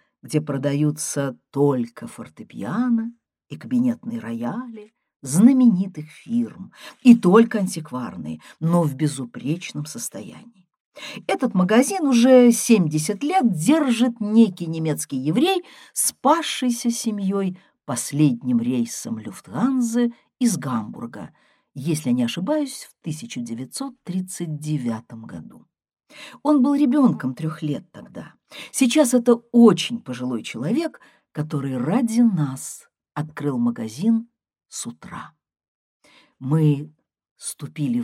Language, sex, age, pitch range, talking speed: Russian, female, 50-69, 150-235 Hz, 90 wpm